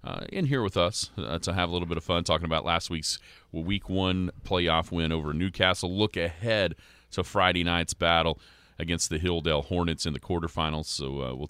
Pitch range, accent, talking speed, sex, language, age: 85-110 Hz, American, 205 wpm, male, English, 40-59